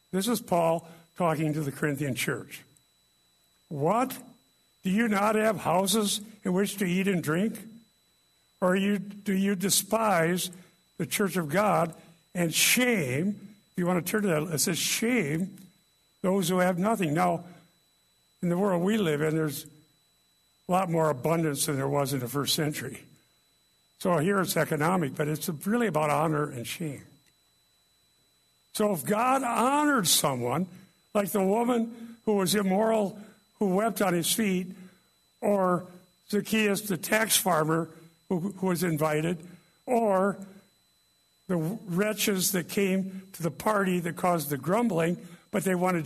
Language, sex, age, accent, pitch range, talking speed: English, male, 60-79, American, 165-205 Hz, 150 wpm